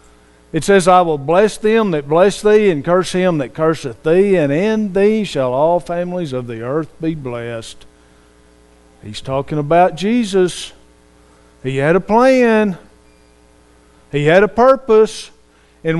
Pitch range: 120-200 Hz